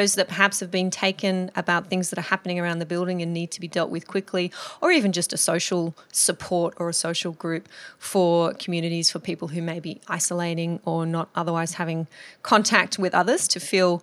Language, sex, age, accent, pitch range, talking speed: English, female, 30-49, Australian, 175-210 Hz, 200 wpm